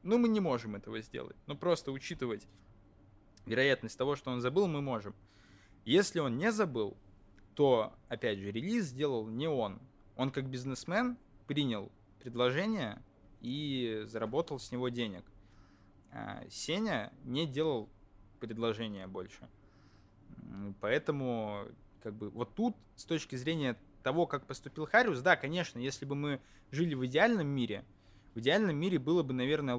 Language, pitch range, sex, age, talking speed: Russian, 100-145 Hz, male, 20-39, 140 wpm